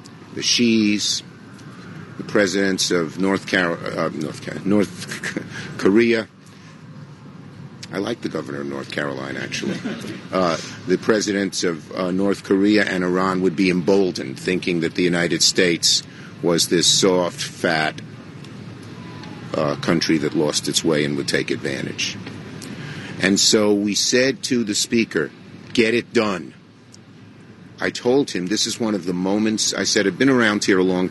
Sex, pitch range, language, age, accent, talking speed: male, 90-110 Hz, English, 50-69, American, 145 wpm